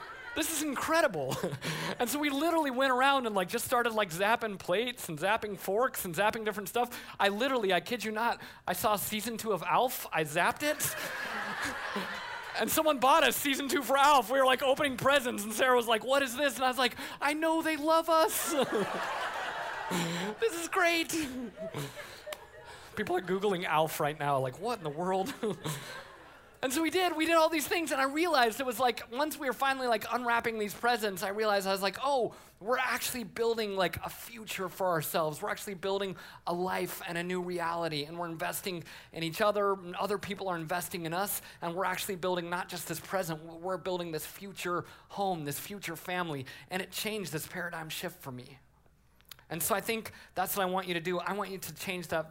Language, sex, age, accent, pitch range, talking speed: English, male, 30-49, American, 175-255 Hz, 210 wpm